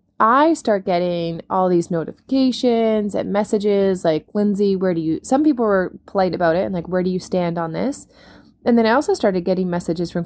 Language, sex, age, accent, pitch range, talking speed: English, female, 20-39, American, 175-225 Hz, 205 wpm